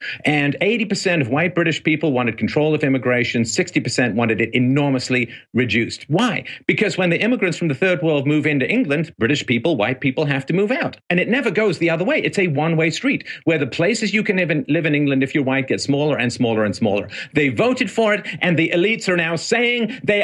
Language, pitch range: English, 145-205 Hz